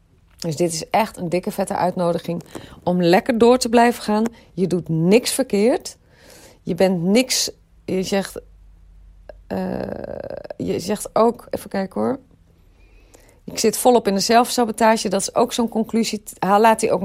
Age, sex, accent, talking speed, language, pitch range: 40-59, female, Dutch, 160 wpm, Dutch, 170-220 Hz